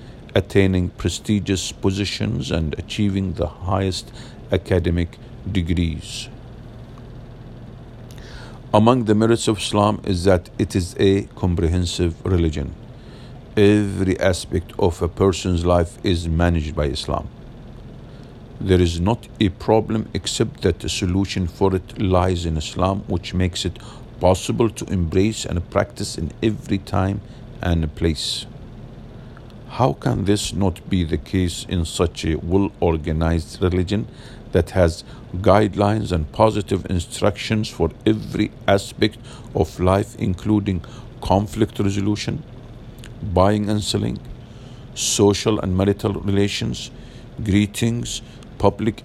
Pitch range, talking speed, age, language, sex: 90-115 Hz, 115 wpm, 50-69, English, male